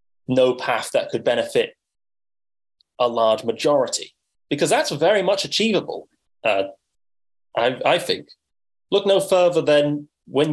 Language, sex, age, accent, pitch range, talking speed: English, male, 20-39, British, 115-155 Hz, 125 wpm